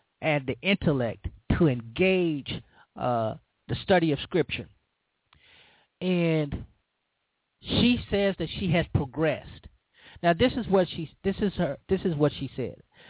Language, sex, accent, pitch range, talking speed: English, male, American, 135-195 Hz, 135 wpm